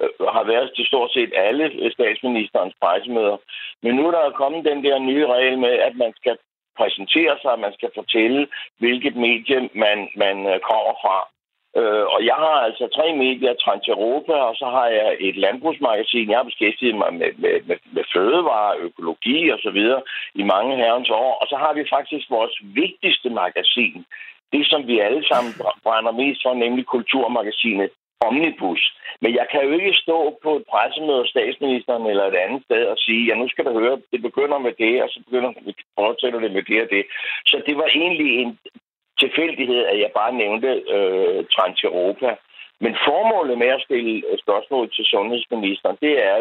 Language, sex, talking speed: Danish, male, 180 wpm